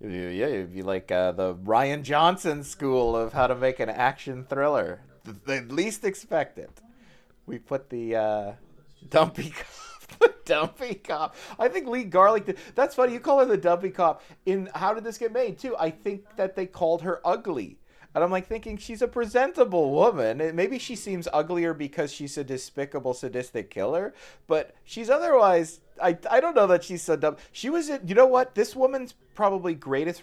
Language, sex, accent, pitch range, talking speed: English, male, American, 135-210 Hz, 190 wpm